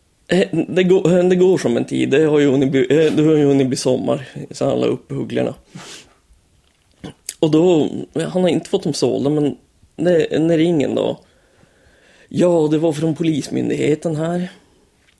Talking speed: 130 wpm